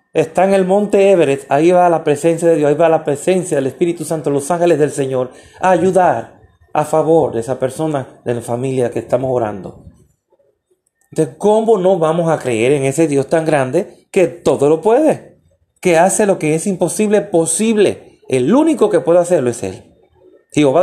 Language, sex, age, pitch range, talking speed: Spanish, male, 30-49, 140-195 Hz, 185 wpm